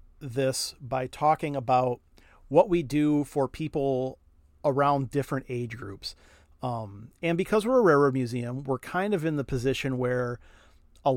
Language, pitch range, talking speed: English, 120-150 Hz, 150 wpm